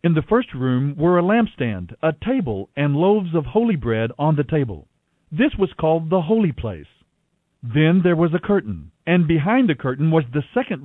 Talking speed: 195 wpm